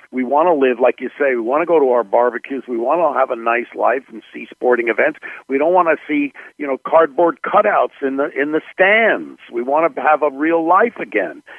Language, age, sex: English, 50-69, male